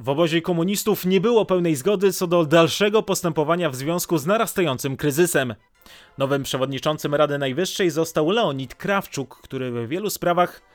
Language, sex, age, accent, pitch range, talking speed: Polish, male, 30-49, native, 140-185 Hz, 150 wpm